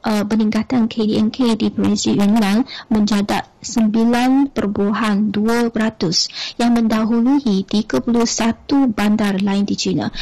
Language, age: Malay, 30-49